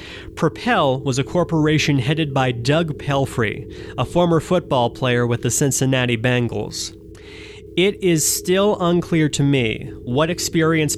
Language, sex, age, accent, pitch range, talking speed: English, male, 30-49, American, 120-165 Hz, 130 wpm